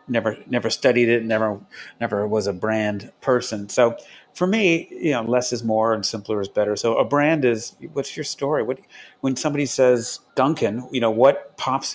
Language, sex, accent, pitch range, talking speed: English, male, American, 105-135 Hz, 190 wpm